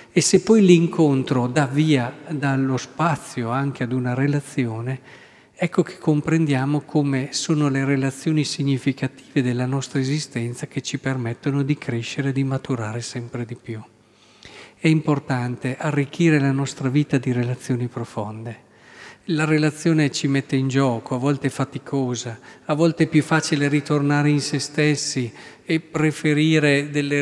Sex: male